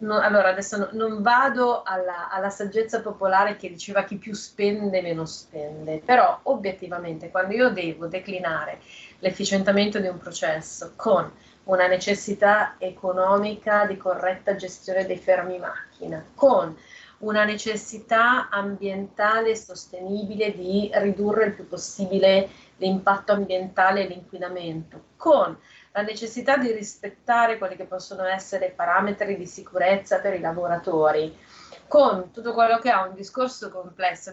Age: 30-49